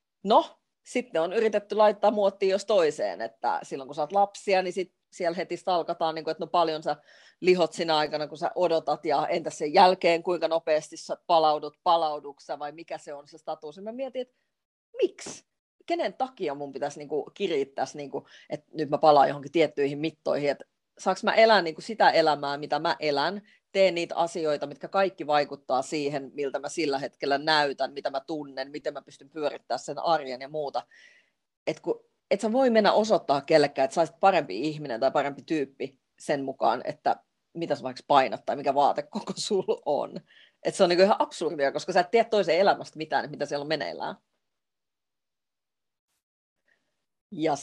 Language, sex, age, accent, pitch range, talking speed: Finnish, female, 30-49, native, 150-200 Hz, 175 wpm